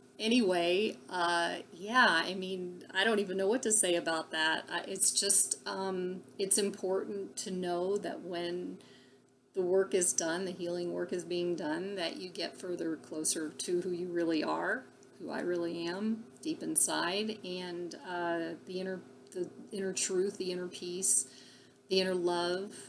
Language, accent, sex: English, American, female